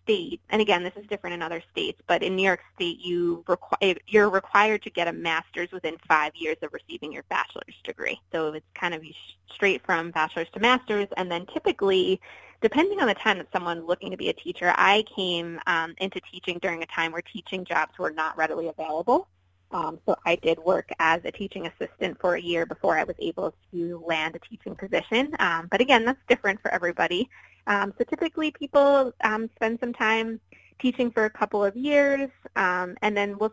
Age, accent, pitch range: 20-39, American, 180-240 Hz